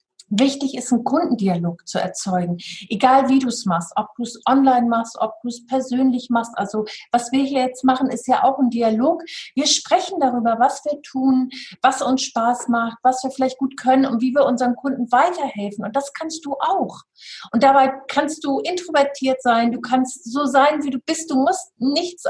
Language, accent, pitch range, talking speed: German, German, 230-275 Hz, 200 wpm